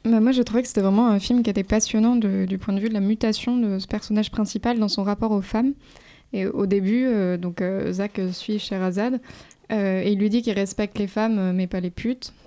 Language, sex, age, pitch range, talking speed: French, female, 20-39, 195-230 Hz, 245 wpm